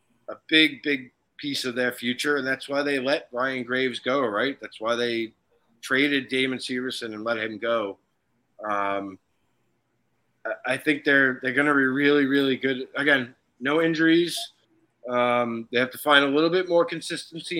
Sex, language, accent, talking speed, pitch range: male, English, American, 170 wpm, 125-160 Hz